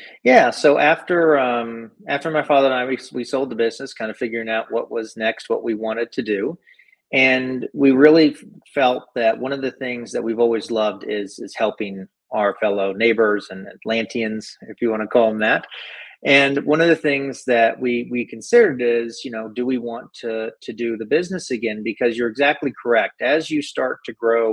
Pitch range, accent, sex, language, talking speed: 110-135 Hz, American, male, English, 210 wpm